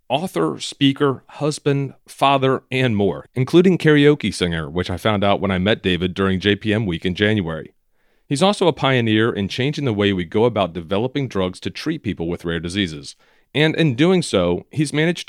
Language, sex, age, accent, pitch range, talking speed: English, male, 40-59, American, 95-145 Hz, 185 wpm